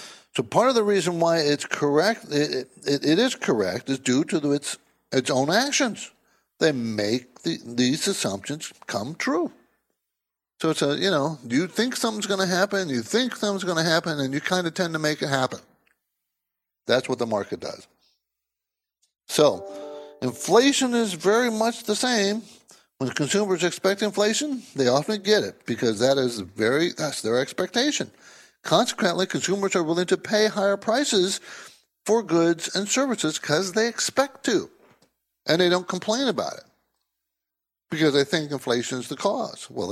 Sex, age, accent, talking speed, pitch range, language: male, 60-79, American, 165 wpm, 125-200 Hz, English